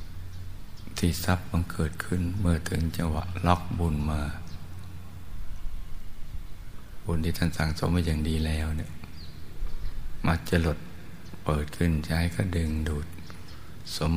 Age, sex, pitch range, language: 60-79, male, 80-85 Hz, Thai